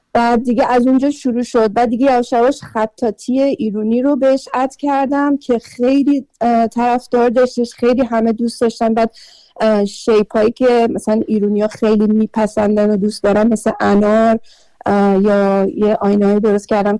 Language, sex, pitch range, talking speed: Persian, female, 205-235 Hz, 150 wpm